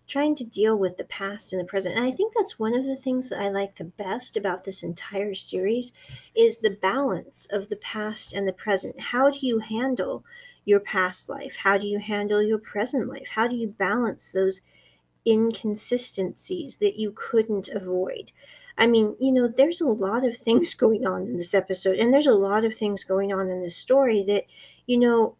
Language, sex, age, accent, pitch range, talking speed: English, female, 40-59, American, 195-245 Hz, 205 wpm